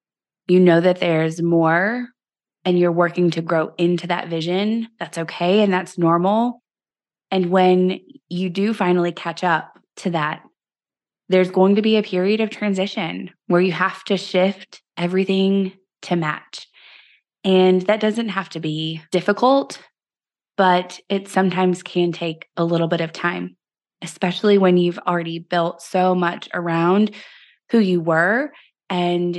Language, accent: English, American